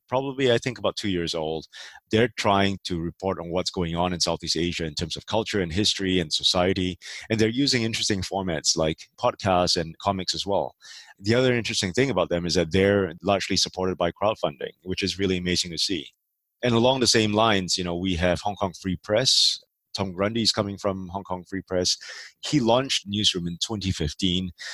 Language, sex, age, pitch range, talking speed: English, male, 30-49, 85-105 Hz, 200 wpm